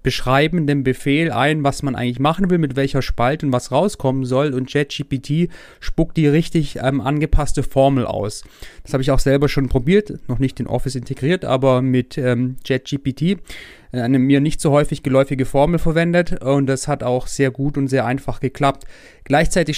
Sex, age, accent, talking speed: male, 30-49, German, 180 wpm